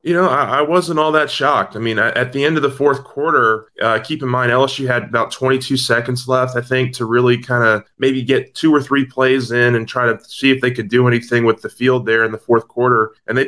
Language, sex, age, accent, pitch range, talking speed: English, male, 20-39, American, 105-125 Hz, 265 wpm